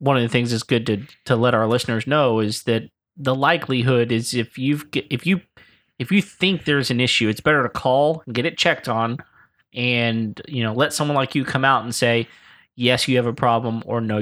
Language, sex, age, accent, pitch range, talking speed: English, male, 30-49, American, 115-140 Hz, 230 wpm